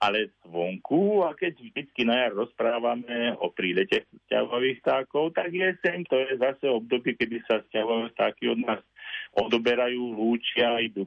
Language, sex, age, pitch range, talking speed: Slovak, male, 50-69, 105-135 Hz, 150 wpm